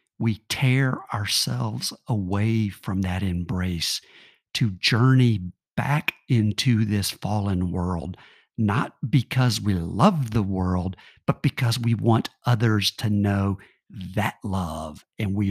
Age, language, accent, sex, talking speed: 50-69, English, American, male, 120 wpm